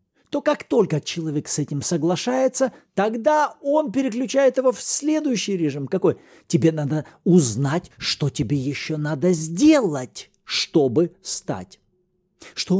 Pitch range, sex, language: 145-230 Hz, male, Russian